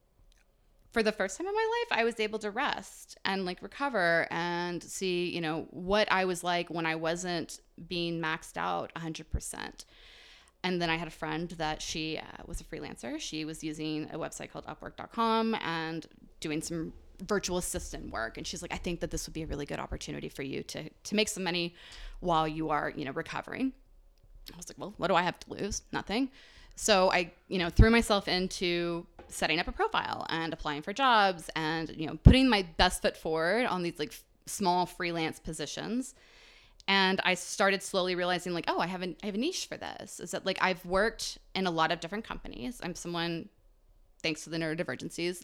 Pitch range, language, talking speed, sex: 160-195 Hz, English, 205 wpm, female